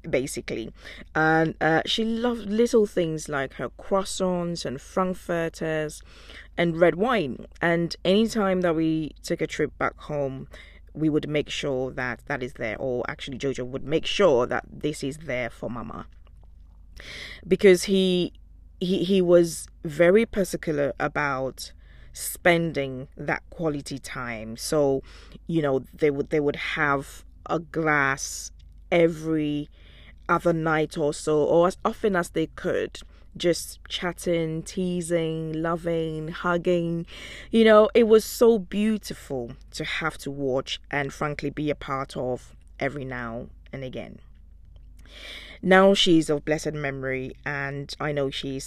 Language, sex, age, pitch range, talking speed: English, female, 20-39, 130-175 Hz, 140 wpm